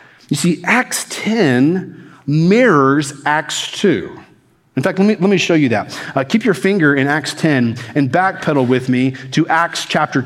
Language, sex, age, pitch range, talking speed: English, male, 40-59, 140-175 Hz, 170 wpm